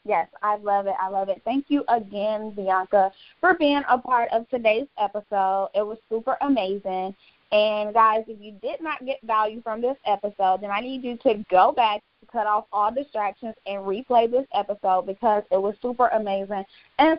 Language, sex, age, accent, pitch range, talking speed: English, female, 20-39, American, 200-245 Hz, 190 wpm